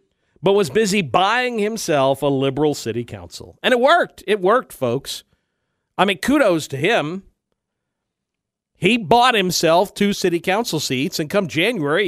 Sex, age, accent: male, 50-69, American